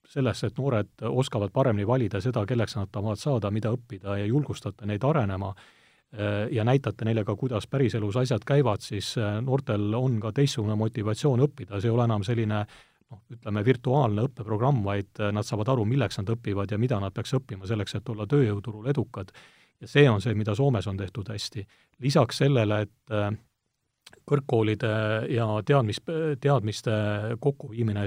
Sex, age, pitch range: male, 40-59, 105-125 Hz